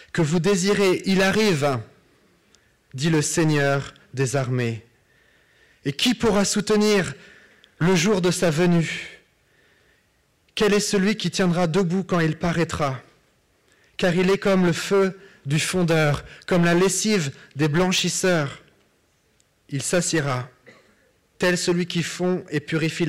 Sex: male